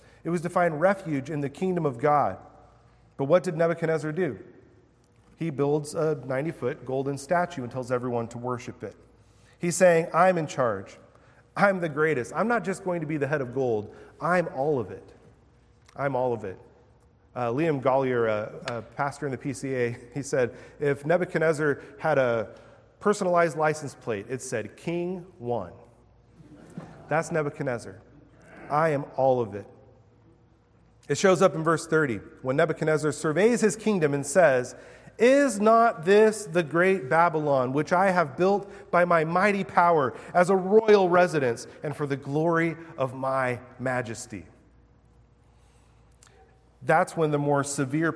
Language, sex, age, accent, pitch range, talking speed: English, male, 30-49, American, 125-170 Hz, 155 wpm